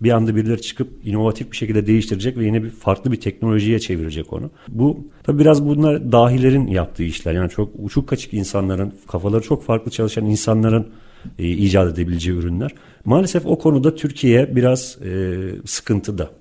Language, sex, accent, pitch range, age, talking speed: Turkish, male, native, 95-125 Hz, 40-59, 160 wpm